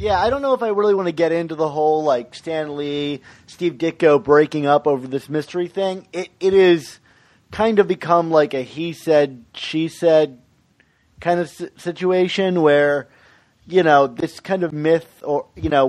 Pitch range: 135-165 Hz